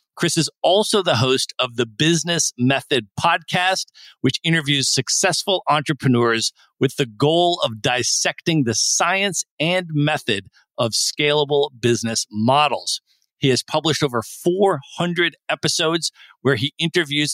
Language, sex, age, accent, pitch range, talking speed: English, male, 40-59, American, 135-170 Hz, 125 wpm